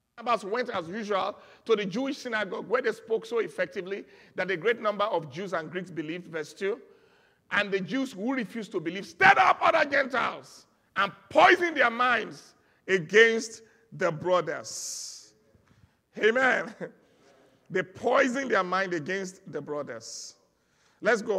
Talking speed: 145 wpm